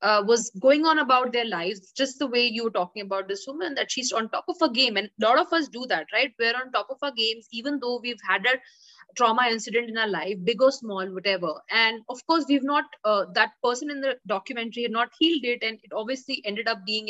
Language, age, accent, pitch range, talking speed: English, 20-39, Indian, 220-270 Hz, 255 wpm